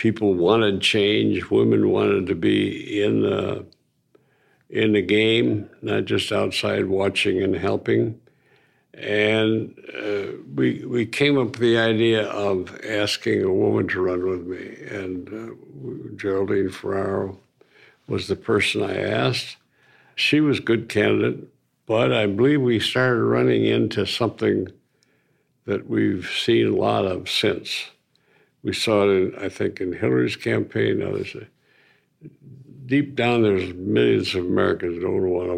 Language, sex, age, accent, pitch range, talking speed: English, male, 60-79, American, 100-115 Hz, 140 wpm